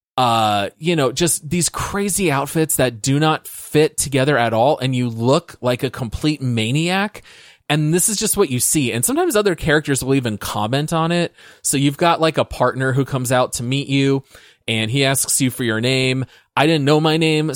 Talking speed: 210 wpm